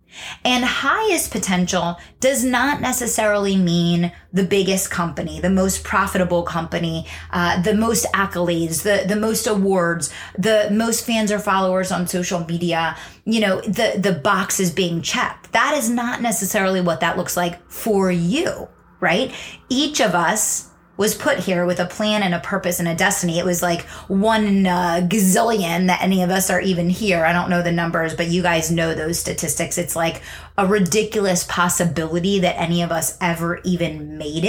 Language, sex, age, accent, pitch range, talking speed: English, female, 30-49, American, 175-230 Hz, 175 wpm